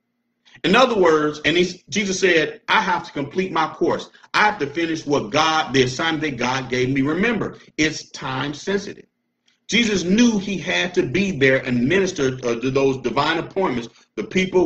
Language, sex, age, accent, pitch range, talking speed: English, male, 50-69, American, 120-165 Hz, 180 wpm